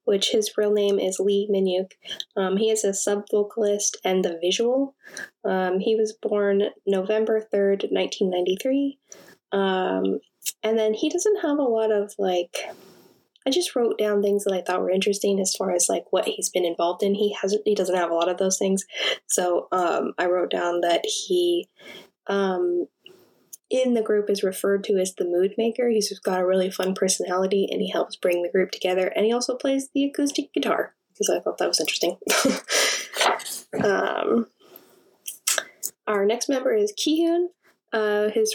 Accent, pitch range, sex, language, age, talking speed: American, 190-230 Hz, female, English, 10-29, 175 wpm